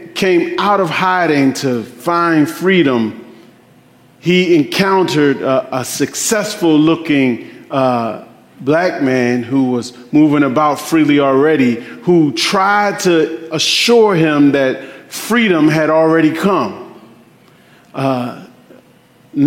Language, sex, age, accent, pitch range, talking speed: English, male, 40-59, American, 145-200 Hz, 100 wpm